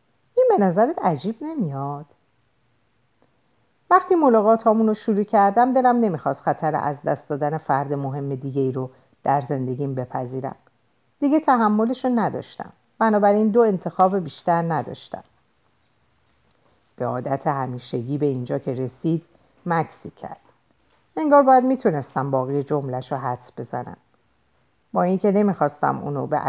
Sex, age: female, 50-69